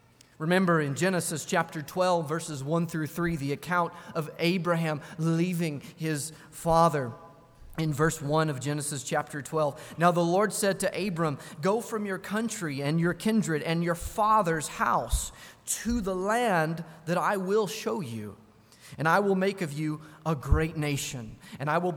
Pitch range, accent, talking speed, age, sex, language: 150-195 Hz, American, 165 wpm, 30-49, male, English